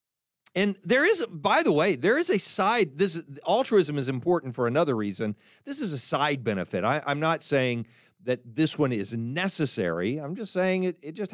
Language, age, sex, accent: English, 50-69, male, American